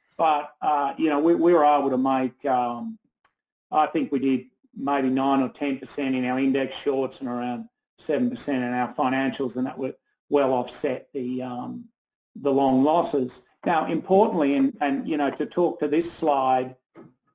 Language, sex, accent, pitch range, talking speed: English, male, Australian, 135-170 Hz, 175 wpm